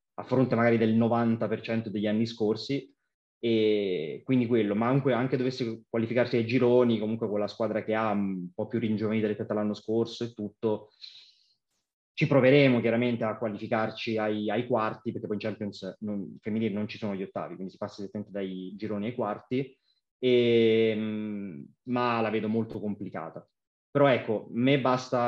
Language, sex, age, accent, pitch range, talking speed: Italian, male, 20-39, native, 105-120 Hz, 165 wpm